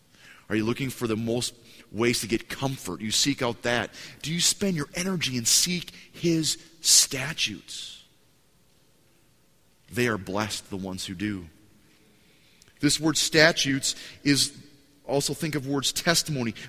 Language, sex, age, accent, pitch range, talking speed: English, male, 30-49, American, 105-150 Hz, 140 wpm